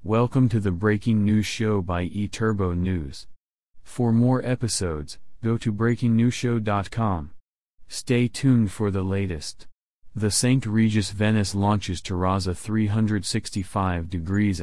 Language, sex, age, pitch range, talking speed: English, male, 30-49, 95-115 Hz, 115 wpm